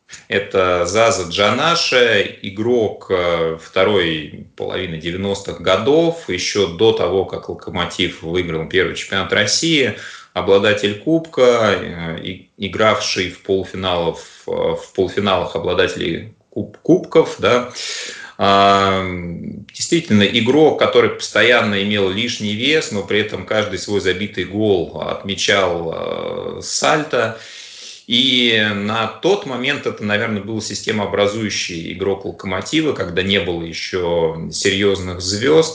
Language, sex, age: Russian, male, 30-49